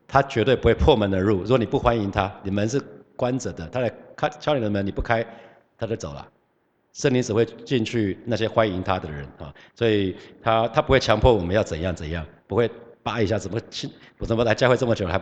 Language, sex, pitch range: Chinese, male, 95-120 Hz